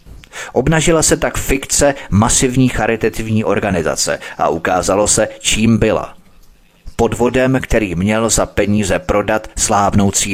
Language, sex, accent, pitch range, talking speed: Czech, male, native, 100-120 Hz, 110 wpm